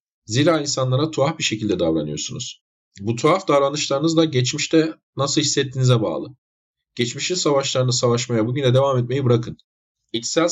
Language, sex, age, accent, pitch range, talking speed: Turkish, male, 40-59, native, 120-150 Hz, 125 wpm